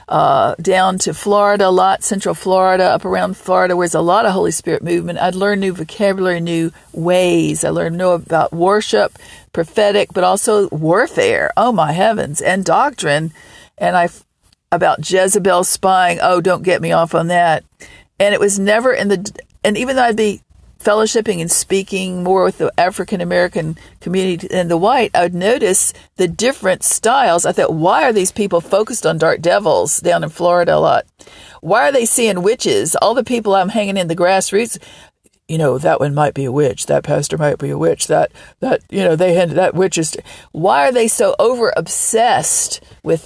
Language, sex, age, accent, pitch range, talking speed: English, female, 50-69, American, 175-205 Hz, 190 wpm